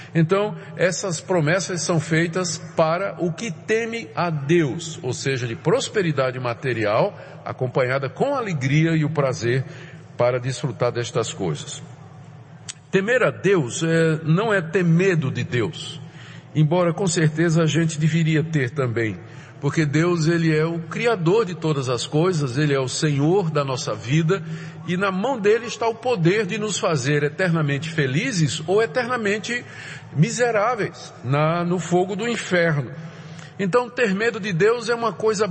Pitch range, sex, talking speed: 145-190 Hz, male, 150 wpm